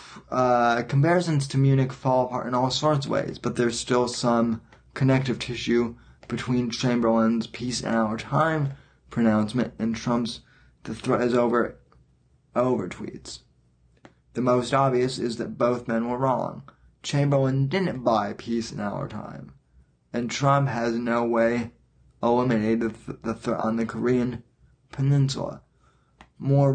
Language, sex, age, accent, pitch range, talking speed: English, male, 20-39, American, 115-130 Hz, 140 wpm